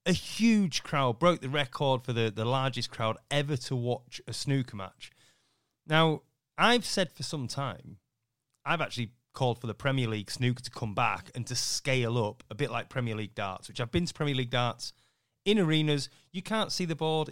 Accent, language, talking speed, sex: British, English, 200 wpm, male